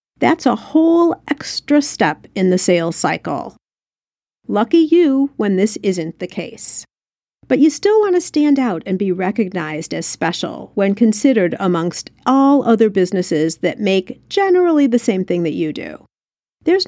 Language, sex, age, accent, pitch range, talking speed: English, female, 50-69, American, 180-260 Hz, 155 wpm